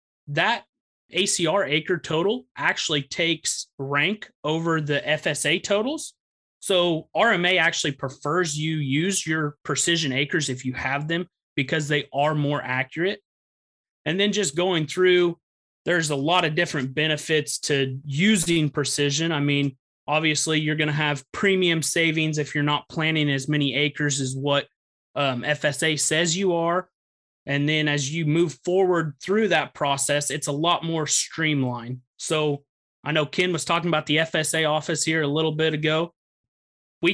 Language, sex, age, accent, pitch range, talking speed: English, male, 30-49, American, 145-170 Hz, 155 wpm